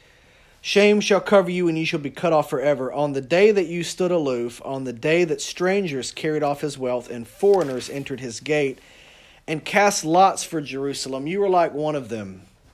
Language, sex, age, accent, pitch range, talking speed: English, male, 40-59, American, 125-170 Hz, 205 wpm